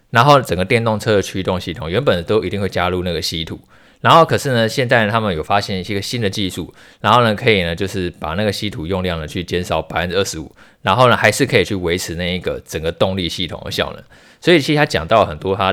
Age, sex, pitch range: 20-39, male, 90-110 Hz